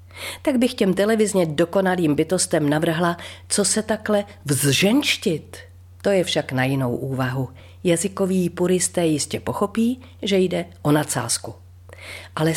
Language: Czech